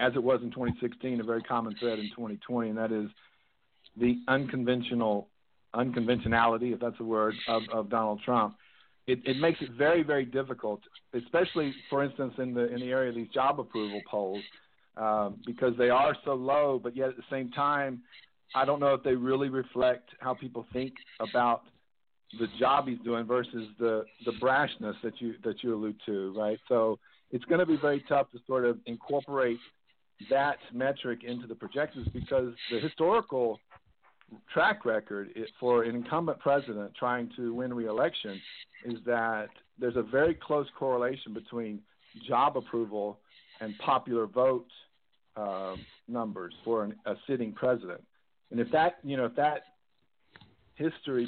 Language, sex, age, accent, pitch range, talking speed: English, male, 50-69, American, 115-135 Hz, 160 wpm